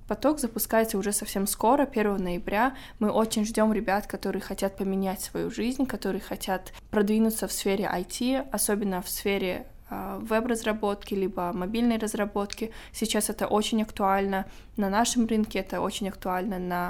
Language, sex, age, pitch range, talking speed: Russian, female, 20-39, 190-220 Hz, 140 wpm